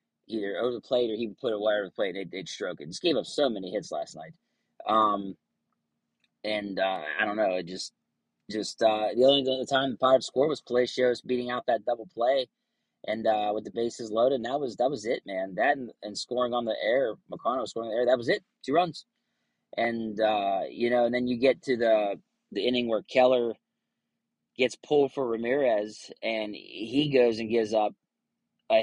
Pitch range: 110-130 Hz